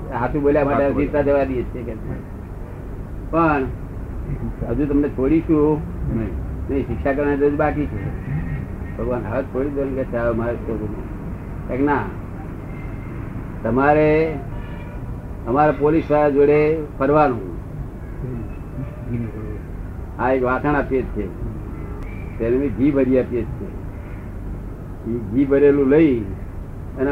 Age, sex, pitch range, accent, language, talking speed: 60-79, male, 100-140 Hz, native, Gujarati, 30 wpm